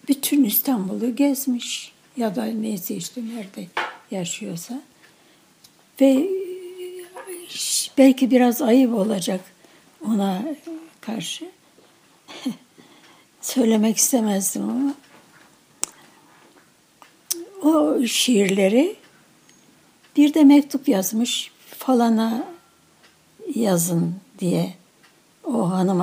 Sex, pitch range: female, 210-280 Hz